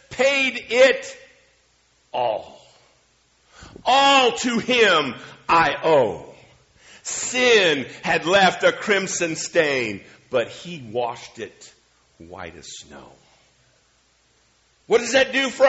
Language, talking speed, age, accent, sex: English, 100 wpm, 50-69, American, male